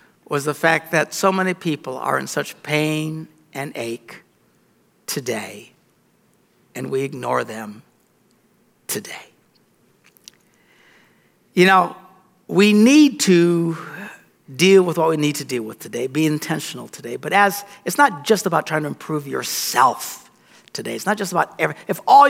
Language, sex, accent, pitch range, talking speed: English, male, American, 150-190 Hz, 145 wpm